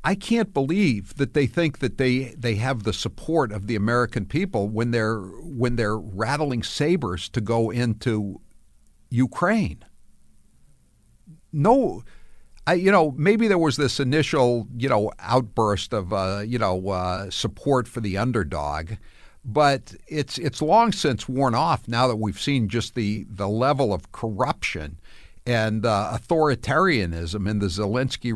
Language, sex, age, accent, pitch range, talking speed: English, male, 60-79, American, 110-160 Hz, 150 wpm